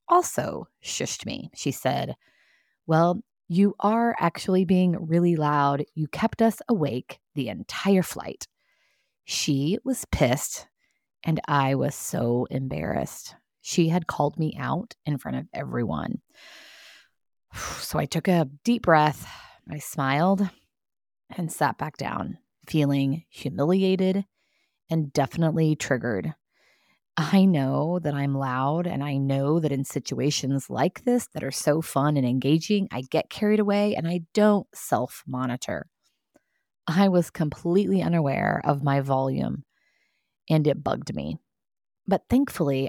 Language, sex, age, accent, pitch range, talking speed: English, female, 20-39, American, 140-185 Hz, 130 wpm